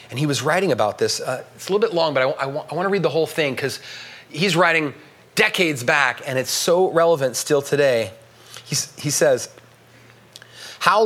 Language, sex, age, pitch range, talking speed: English, male, 30-49, 135-190 Hz, 190 wpm